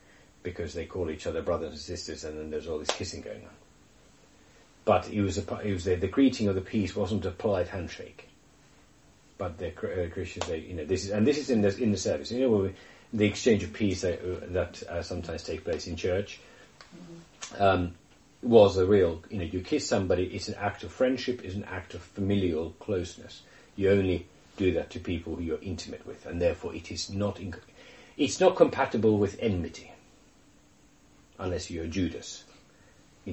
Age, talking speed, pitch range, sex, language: 40-59, 195 wpm, 85-100 Hz, male, English